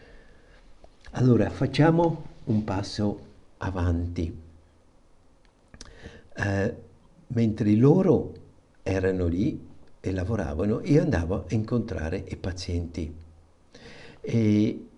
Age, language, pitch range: 60-79, Italian, 90-115 Hz